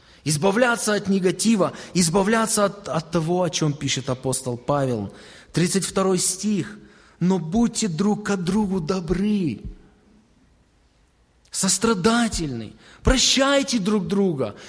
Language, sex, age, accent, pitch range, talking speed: Russian, male, 20-39, native, 150-215 Hz, 100 wpm